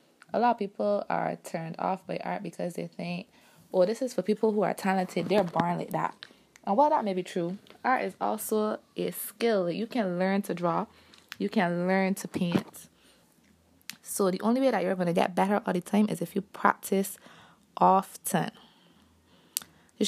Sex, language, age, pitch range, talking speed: female, English, 20-39, 175-205 Hz, 190 wpm